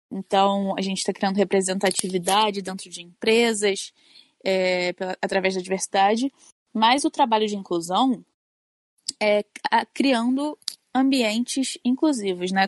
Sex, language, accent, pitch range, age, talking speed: female, Portuguese, Brazilian, 190-230 Hz, 10-29, 105 wpm